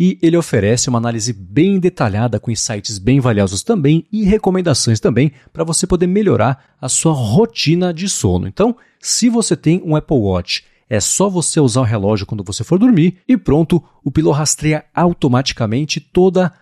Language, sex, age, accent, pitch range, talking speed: Portuguese, male, 40-59, Brazilian, 115-170 Hz, 175 wpm